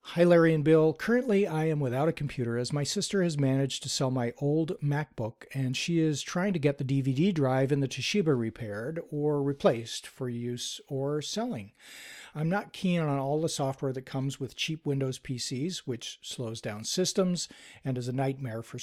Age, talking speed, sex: 40-59, 195 wpm, male